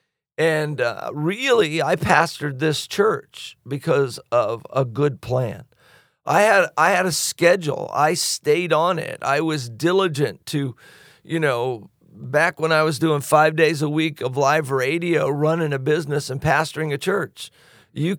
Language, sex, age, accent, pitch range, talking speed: English, male, 50-69, American, 145-185 Hz, 160 wpm